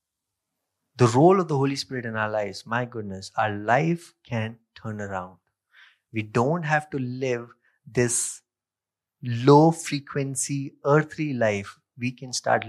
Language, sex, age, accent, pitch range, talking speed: English, male, 30-49, Indian, 115-165 Hz, 130 wpm